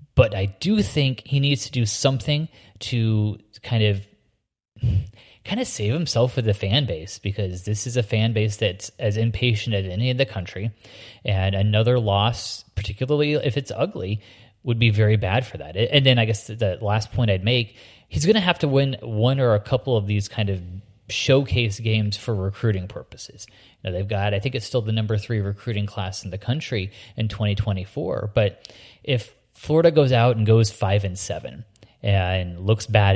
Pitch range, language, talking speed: 100-125 Hz, English, 190 wpm